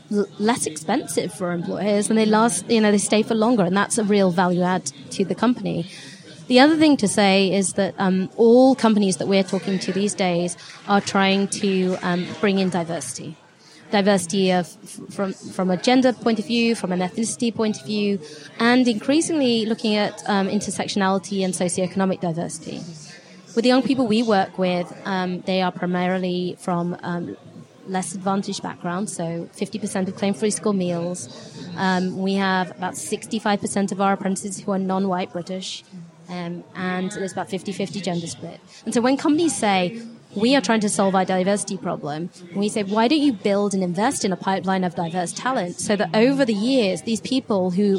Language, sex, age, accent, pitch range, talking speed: English, female, 20-39, British, 180-215 Hz, 180 wpm